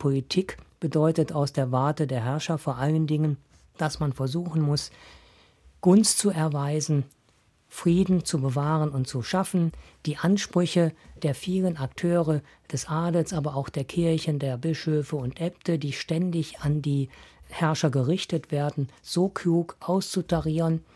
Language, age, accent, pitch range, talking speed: German, 50-69, German, 130-165 Hz, 135 wpm